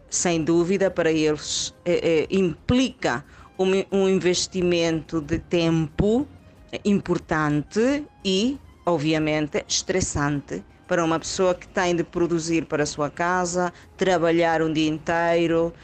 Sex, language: female, Portuguese